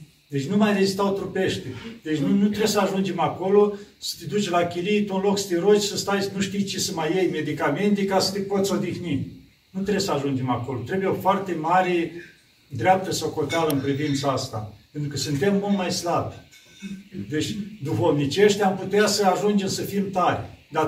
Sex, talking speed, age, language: male, 200 wpm, 50-69, Romanian